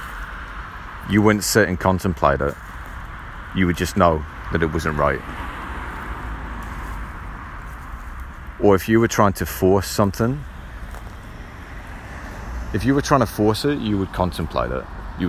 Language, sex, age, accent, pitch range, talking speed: English, male, 30-49, British, 75-100 Hz, 135 wpm